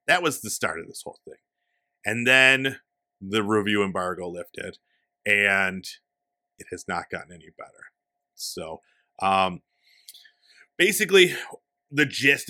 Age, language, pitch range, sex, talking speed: 40-59, English, 100-140 Hz, male, 125 wpm